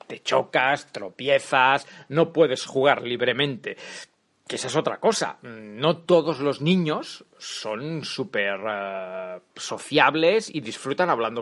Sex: male